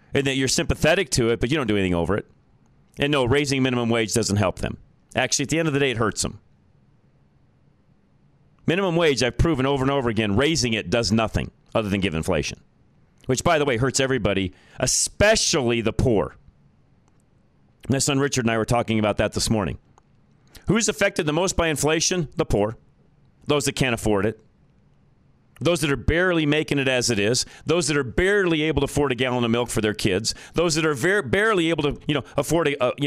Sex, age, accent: male, 40-59, American